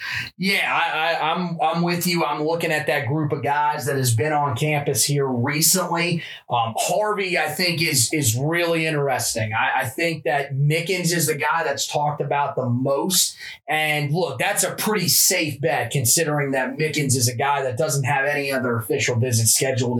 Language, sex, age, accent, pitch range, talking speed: English, male, 30-49, American, 135-170 Hz, 190 wpm